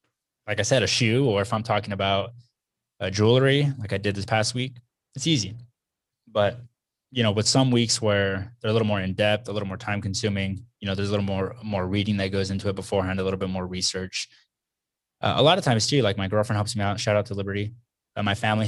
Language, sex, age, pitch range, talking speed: English, male, 20-39, 100-115 Hz, 235 wpm